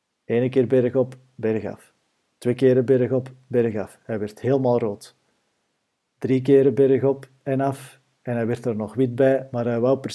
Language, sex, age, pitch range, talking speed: Dutch, male, 50-69, 115-135 Hz, 195 wpm